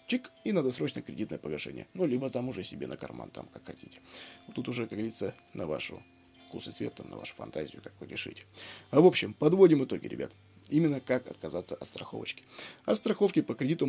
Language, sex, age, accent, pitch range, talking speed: Russian, male, 20-39, native, 110-155 Hz, 200 wpm